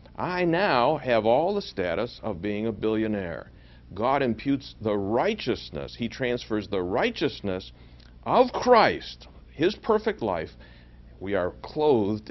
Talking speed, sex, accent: 125 wpm, male, American